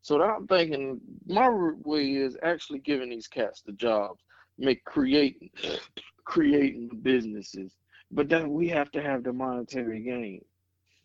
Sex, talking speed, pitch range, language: male, 140 wpm, 105-155 Hz, English